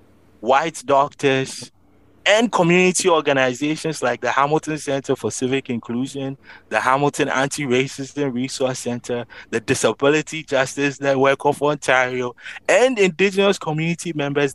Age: 30-49